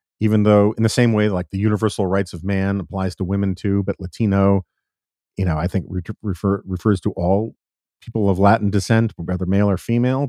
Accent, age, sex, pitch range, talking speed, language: American, 40-59, male, 95-120 Hz, 205 wpm, English